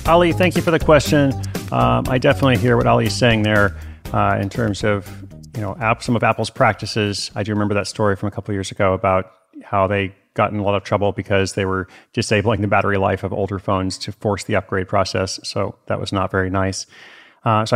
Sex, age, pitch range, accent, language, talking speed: male, 30-49, 100-120 Hz, American, English, 230 wpm